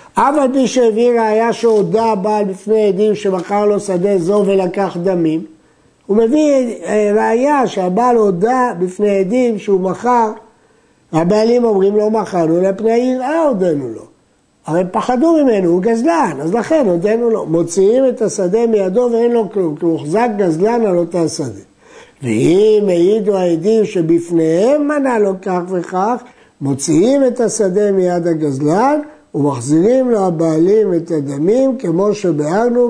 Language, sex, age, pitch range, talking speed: Hebrew, male, 60-79, 170-230 Hz, 135 wpm